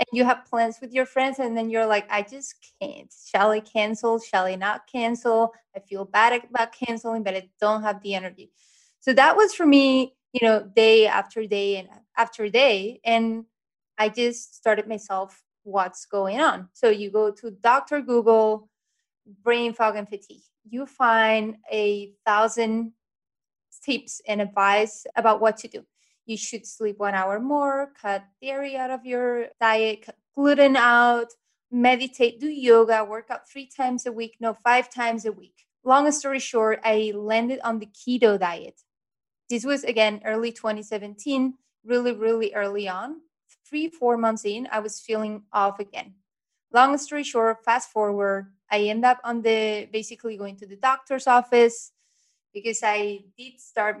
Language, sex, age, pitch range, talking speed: English, female, 20-39, 210-250 Hz, 165 wpm